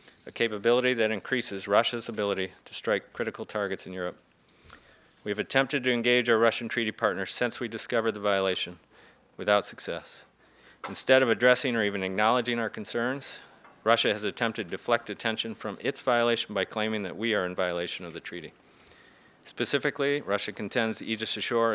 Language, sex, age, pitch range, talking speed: English, male, 40-59, 105-125 Hz, 165 wpm